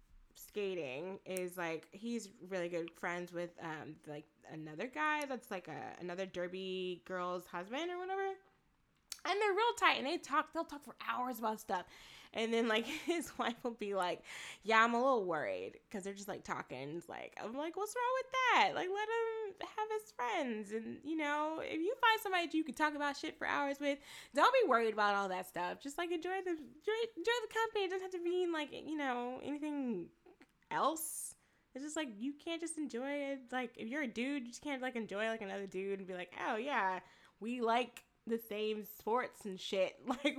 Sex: female